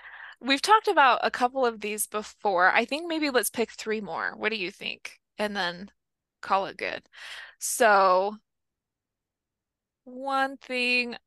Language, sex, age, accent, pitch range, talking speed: English, female, 20-39, American, 200-240 Hz, 145 wpm